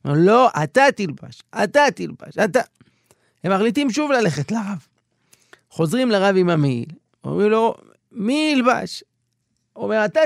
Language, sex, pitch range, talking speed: Hebrew, male, 155-250 Hz, 130 wpm